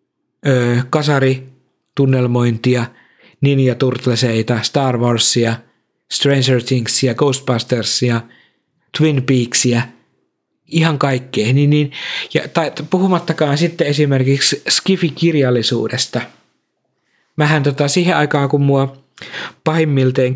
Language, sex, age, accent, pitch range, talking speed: Finnish, male, 50-69, native, 125-150 Hz, 85 wpm